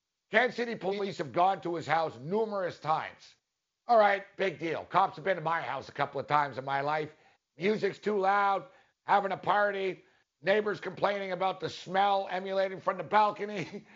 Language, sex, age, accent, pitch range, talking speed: English, male, 60-79, American, 170-215 Hz, 180 wpm